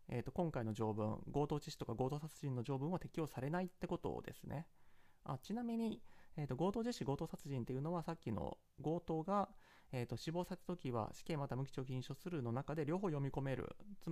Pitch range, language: 125-190 Hz, Japanese